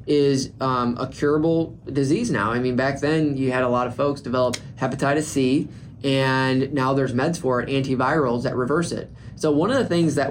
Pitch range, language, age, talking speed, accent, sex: 120-145 Hz, English, 20-39, 205 wpm, American, male